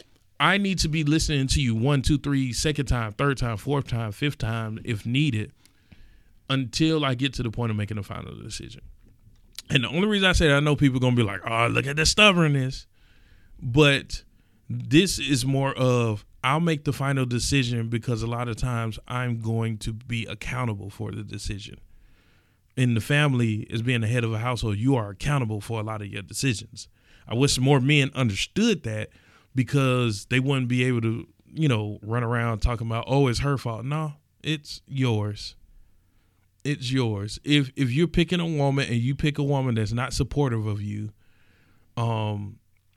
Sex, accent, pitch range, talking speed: male, American, 105-135 Hz, 190 wpm